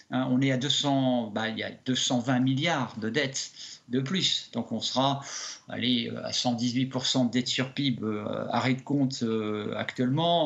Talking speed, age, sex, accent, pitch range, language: 165 wpm, 50-69, male, French, 130-175 Hz, French